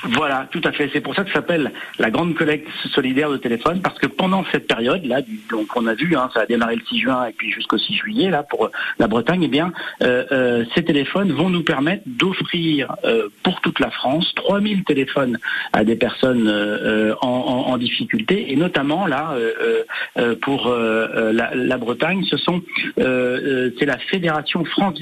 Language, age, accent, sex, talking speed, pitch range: French, 50-69, French, male, 200 wpm, 120-165 Hz